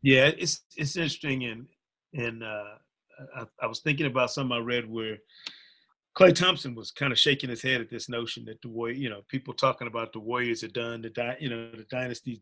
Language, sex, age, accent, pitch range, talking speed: English, male, 30-49, American, 120-145 Hz, 215 wpm